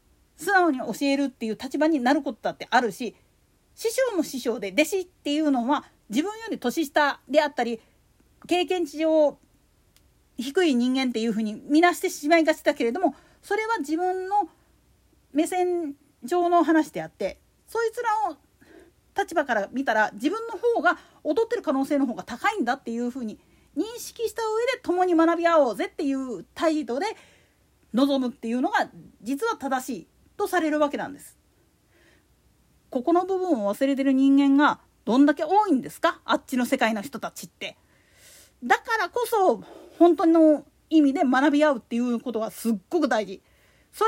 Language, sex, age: Japanese, female, 40-59